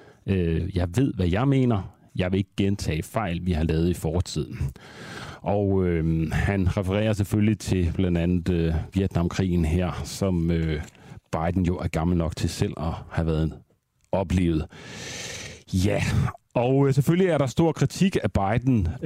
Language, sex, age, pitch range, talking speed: Danish, male, 40-59, 85-110 Hz, 140 wpm